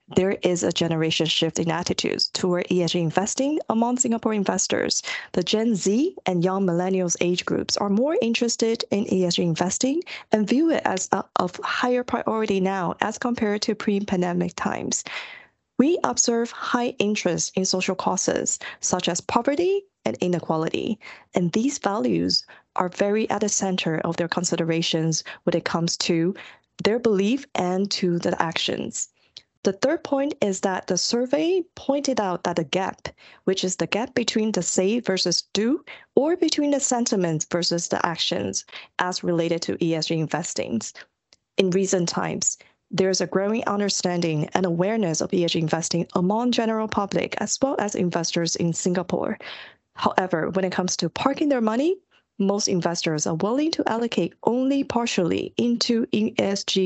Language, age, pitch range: English, 20-39, 175-235 Hz